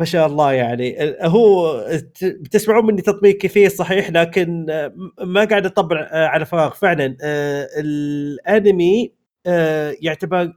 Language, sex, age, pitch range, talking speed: Arabic, male, 30-49, 150-195 Hz, 120 wpm